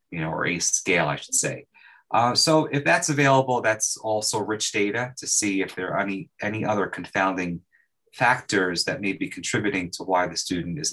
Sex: male